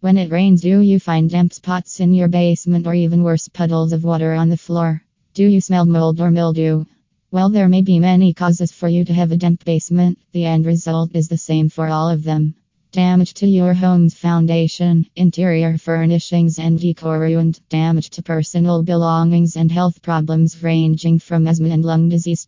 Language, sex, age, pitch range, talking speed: English, female, 20-39, 165-175 Hz, 190 wpm